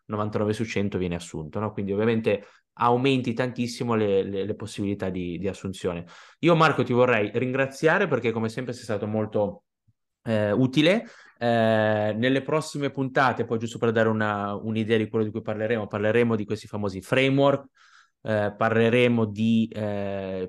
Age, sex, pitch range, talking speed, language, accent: 20-39, male, 100-115 Hz, 160 wpm, Italian, native